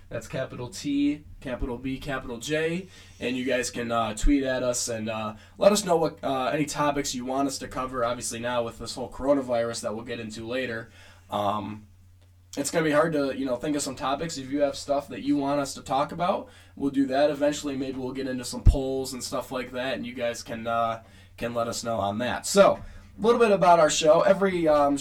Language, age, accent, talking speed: English, 10-29, American, 235 wpm